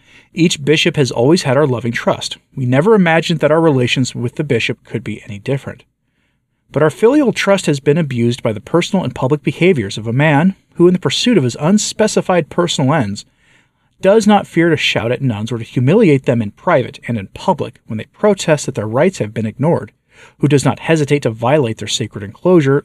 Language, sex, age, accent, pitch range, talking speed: English, male, 40-59, American, 120-165 Hz, 210 wpm